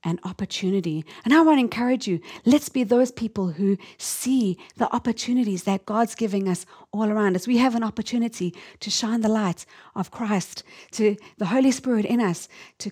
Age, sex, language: 40-59, female, Japanese